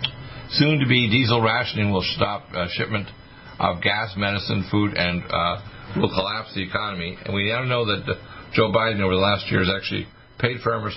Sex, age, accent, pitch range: male, 50-69, American, 95-115 Hz